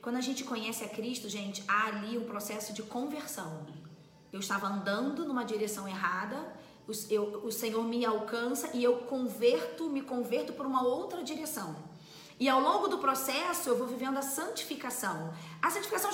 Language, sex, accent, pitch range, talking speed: Portuguese, female, Brazilian, 205-285 Hz, 165 wpm